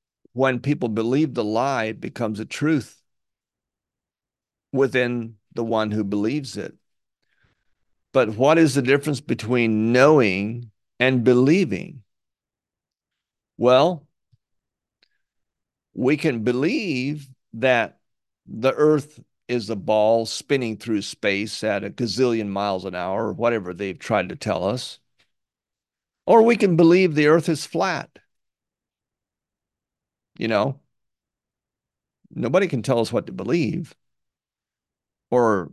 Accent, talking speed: American, 115 wpm